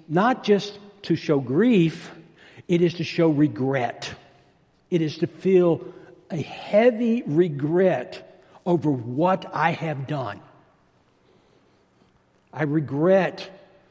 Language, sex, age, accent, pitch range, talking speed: English, male, 60-79, American, 145-185 Hz, 105 wpm